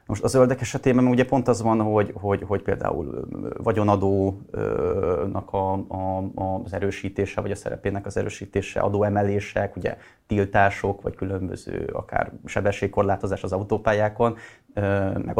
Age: 30-49